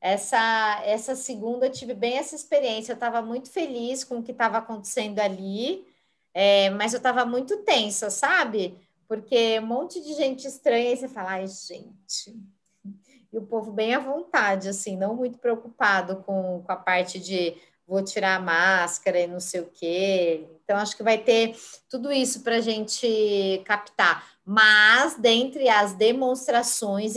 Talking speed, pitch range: 165 wpm, 205-250 Hz